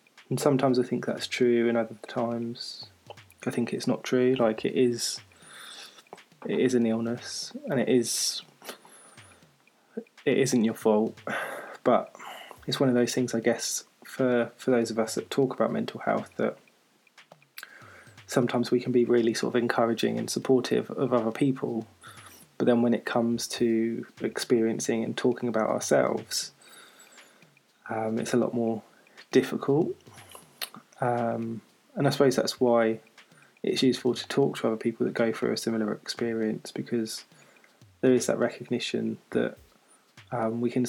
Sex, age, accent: male, 20-39, British